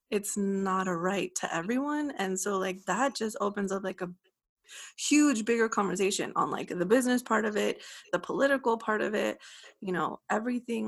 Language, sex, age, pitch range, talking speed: English, female, 20-39, 195-255 Hz, 180 wpm